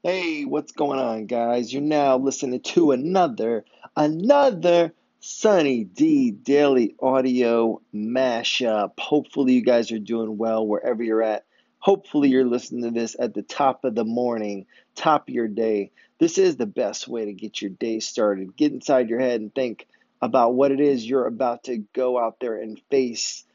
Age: 30-49